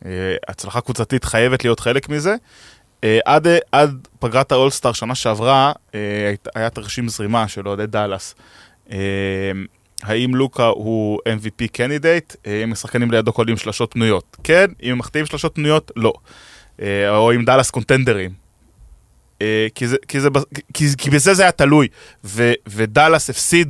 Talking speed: 140 wpm